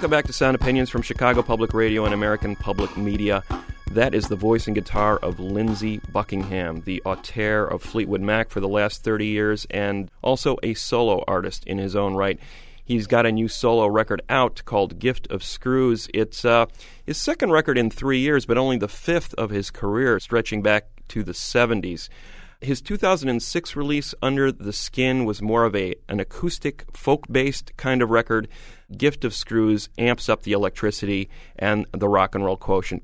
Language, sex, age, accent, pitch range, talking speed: English, male, 30-49, American, 100-125 Hz, 185 wpm